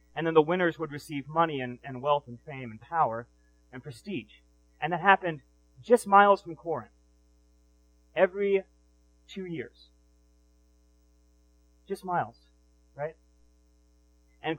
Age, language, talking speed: 30-49, English, 125 wpm